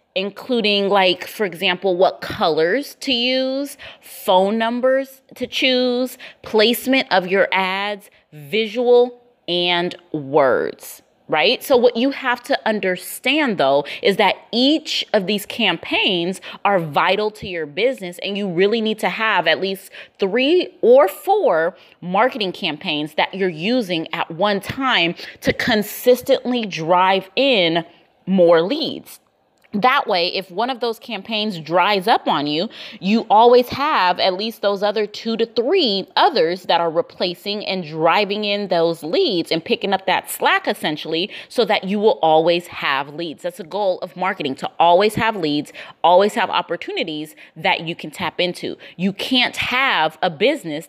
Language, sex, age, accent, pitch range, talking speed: English, female, 20-39, American, 175-245 Hz, 150 wpm